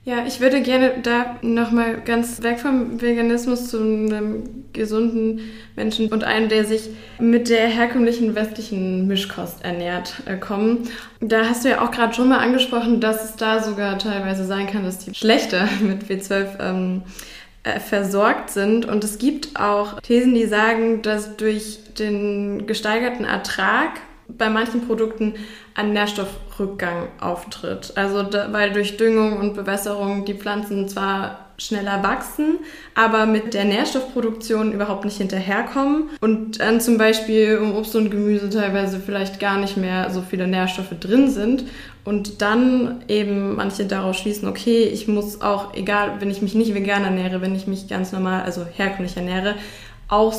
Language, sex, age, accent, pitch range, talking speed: German, female, 20-39, German, 200-230 Hz, 155 wpm